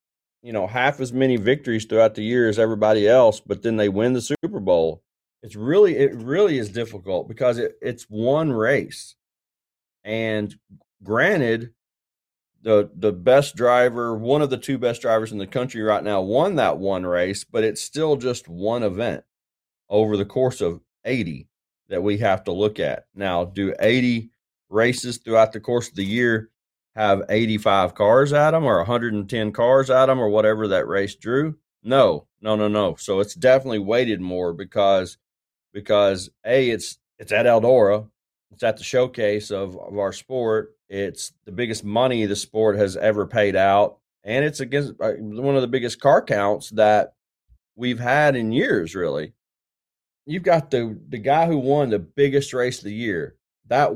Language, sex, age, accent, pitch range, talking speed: English, male, 30-49, American, 105-130 Hz, 175 wpm